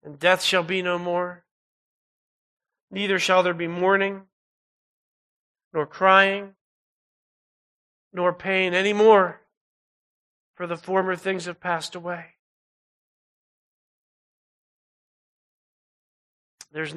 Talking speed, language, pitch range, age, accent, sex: 90 wpm, English, 170-205 Hz, 40-59, American, male